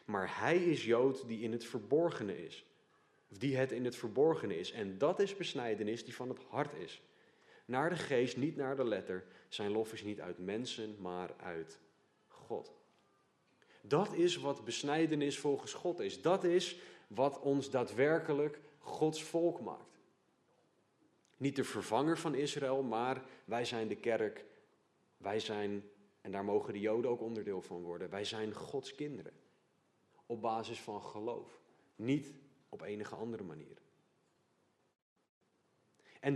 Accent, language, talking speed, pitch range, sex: Dutch, Dutch, 150 wpm, 110-145 Hz, male